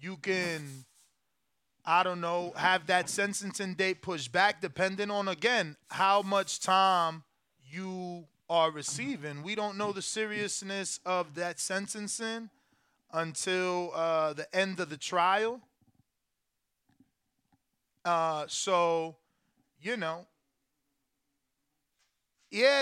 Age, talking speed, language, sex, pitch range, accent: 20-39, 105 wpm, English, male, 160-215 Hz, American